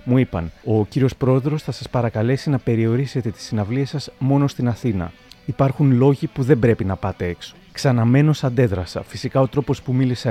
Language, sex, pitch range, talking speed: Greek, male, 105-135 Hz, 180 wpm